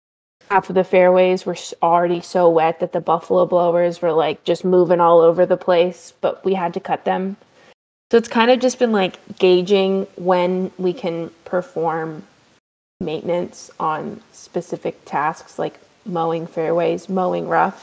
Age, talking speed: 20-39, 160 wpm